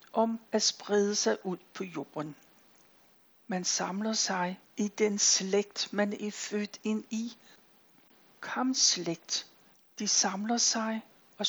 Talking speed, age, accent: 120 wpm, 60-79, native